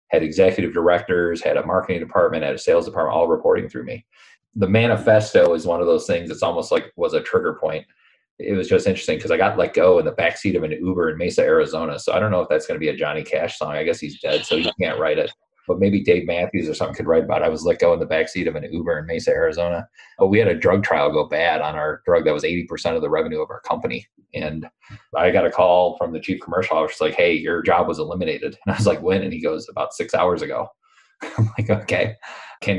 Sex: male